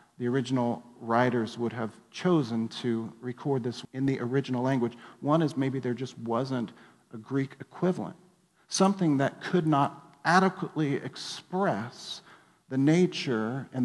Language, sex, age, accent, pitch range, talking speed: English, male, 50-69, American, 120-150 Hz, 135 wpm